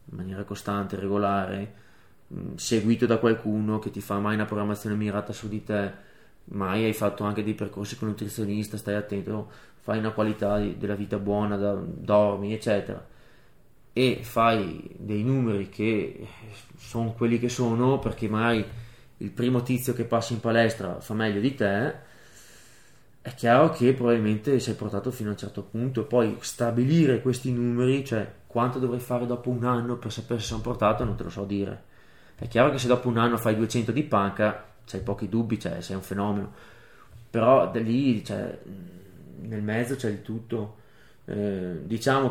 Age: 20-39